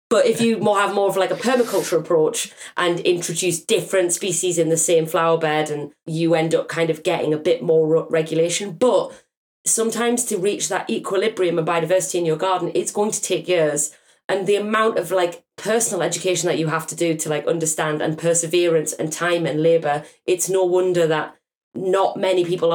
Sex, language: female, English